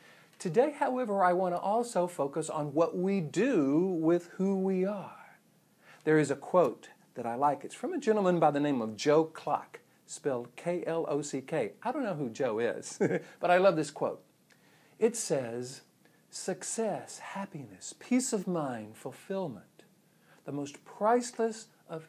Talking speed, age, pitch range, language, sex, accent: 155 wpm, 50-69, 140-190 Hz, English, male, American